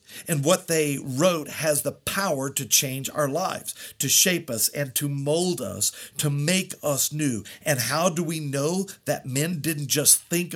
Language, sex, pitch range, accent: English, male, 125-160 Hz, American